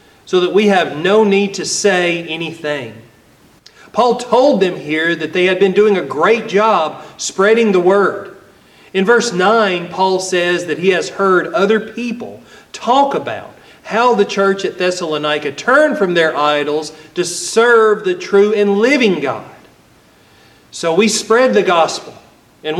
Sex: male